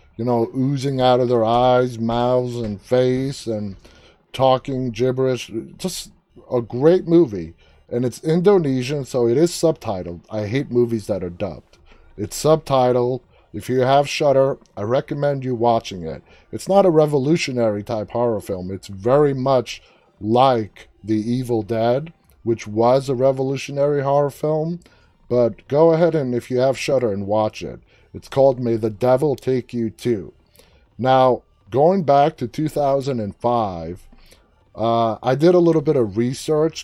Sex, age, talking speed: male, 30-49, 150 wpm